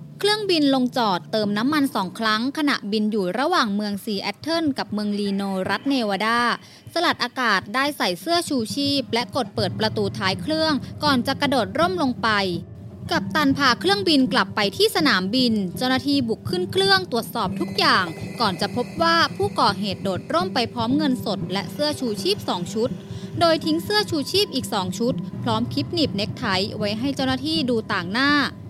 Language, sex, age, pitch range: English, female, 20-39, 205-280 Hz